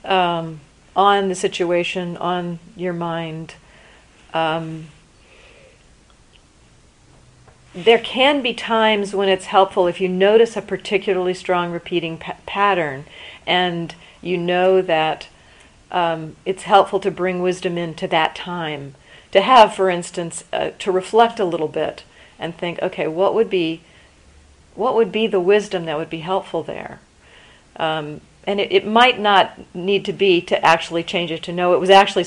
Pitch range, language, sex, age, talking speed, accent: 160-195 Hz, English, female, 50-69, 150 wpm, American